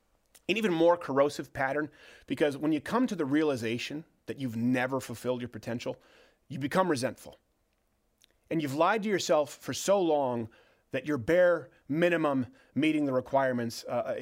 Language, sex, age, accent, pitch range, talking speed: English, male, 30-49, American, 140-225 Hz, 155 wpm